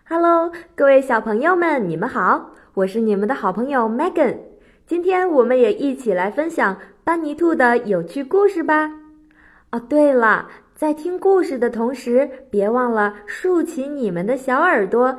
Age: 20-39